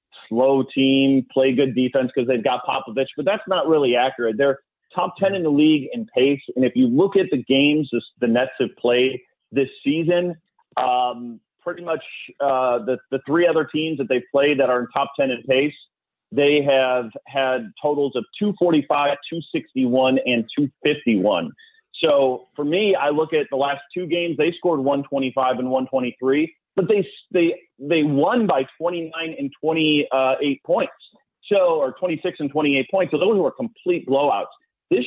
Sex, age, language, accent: male, 30-49, English, American